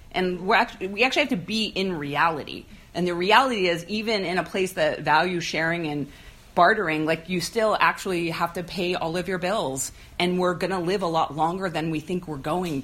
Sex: female